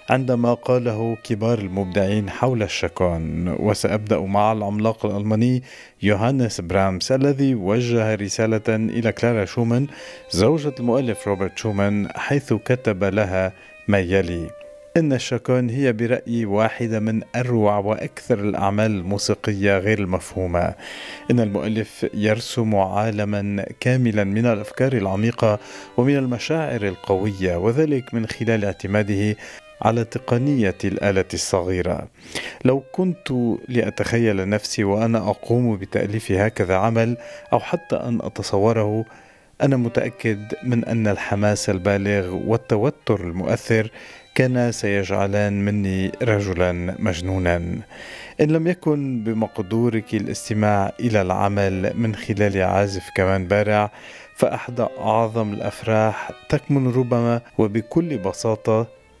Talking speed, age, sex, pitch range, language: 105 wpm, 50-69, male, 100-120 Hz, Arabic